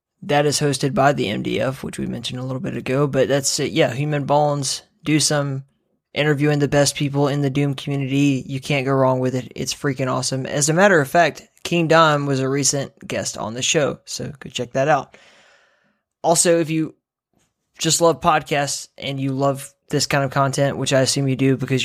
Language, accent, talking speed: English, American, 210 wpm